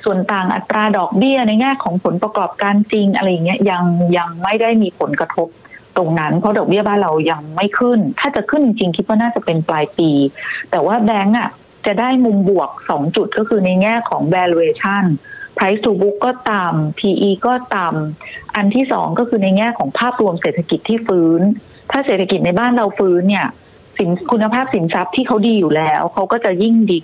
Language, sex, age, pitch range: Thai, female, 30-49, 180-225 Hz